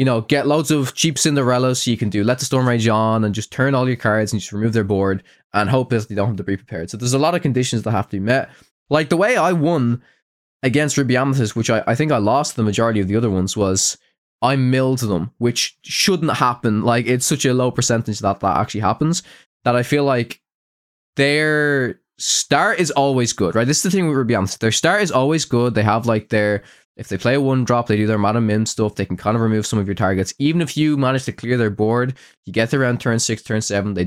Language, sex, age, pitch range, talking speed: English, male, 20-39, 100-130 Hz, 255 wpm